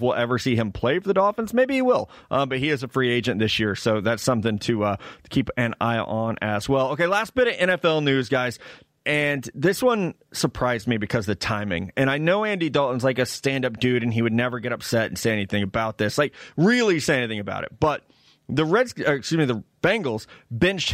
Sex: male